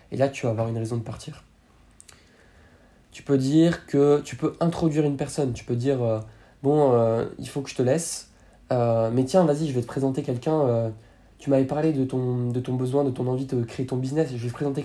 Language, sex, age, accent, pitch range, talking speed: French, male, 20-39, French, 120-135 Hz, 245 wpm